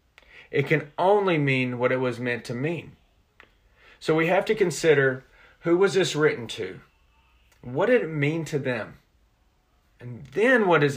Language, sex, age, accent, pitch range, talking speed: English, male, 40-59, American, 135-170 Hz, 165 wpm